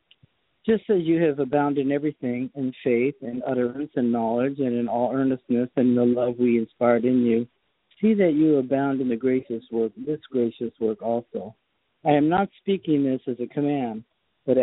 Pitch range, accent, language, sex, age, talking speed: 125-145 Hz, American, English, male, 50-69, 185 wpm